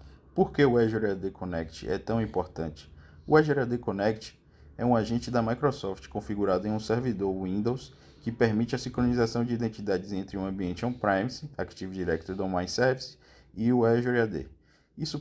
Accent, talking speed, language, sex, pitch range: Brazilian, 150 wpm, Portuguese, male, 95-115 Hz